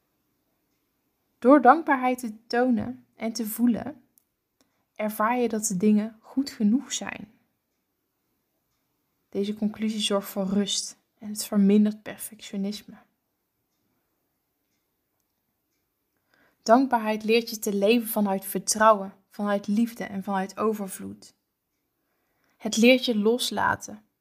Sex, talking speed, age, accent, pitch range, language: female, 100 wpm, 20-39, Dutch, 210-245 Hz, Dutch